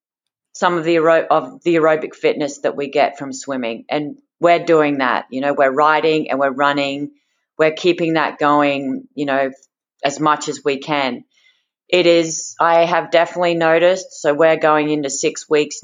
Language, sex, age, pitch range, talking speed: English, female, 30-49, 145-170 Hz, 180 wpm